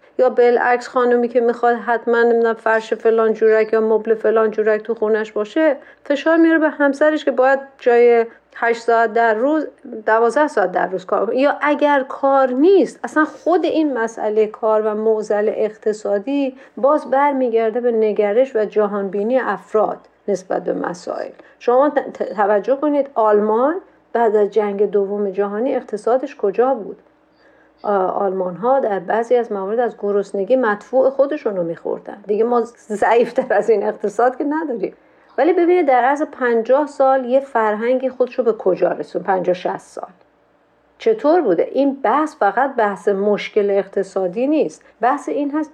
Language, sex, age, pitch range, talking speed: Persian, female, 40-59, 215-270 Hz, 150 wpm